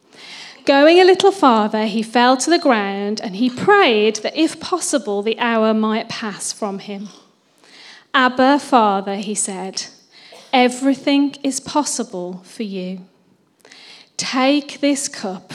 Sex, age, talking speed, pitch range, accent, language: female, 40-59, 125 wpm, 205-275 Hz, British, English